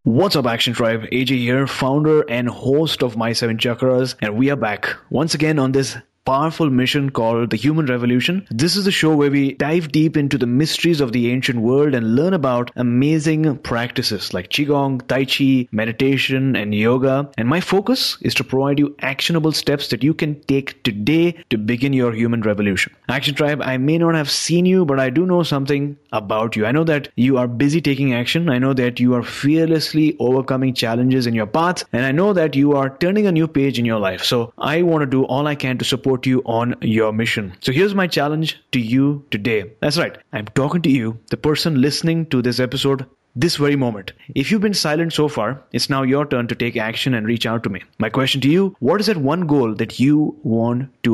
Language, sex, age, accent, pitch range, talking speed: English, male, 30-49, Indian, 120-155 Hz, 220 wpm